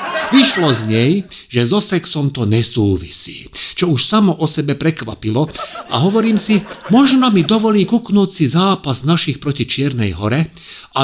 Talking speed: 150 wpm